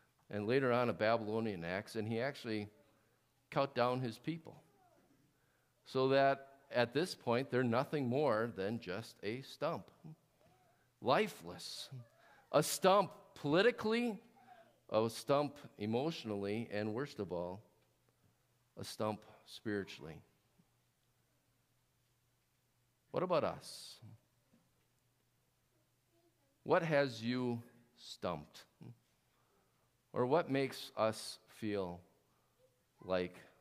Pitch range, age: 115-155 Hz, 50-69